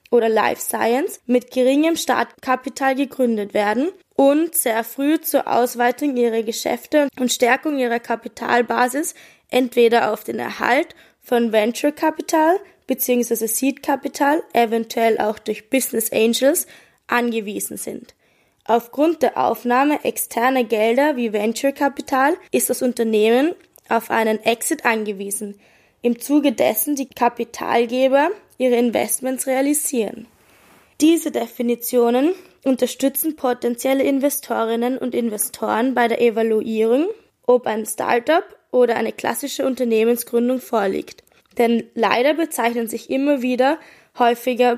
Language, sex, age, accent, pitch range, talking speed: German, female, 20-39, German, 235-280 Hz, 115 wpm